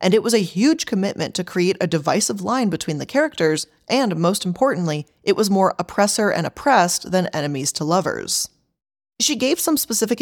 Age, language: 20-39, English